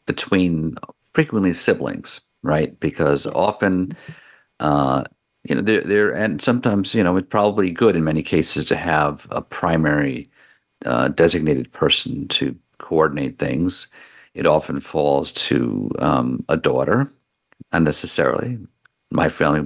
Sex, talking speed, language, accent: male, 125 wpm, English, American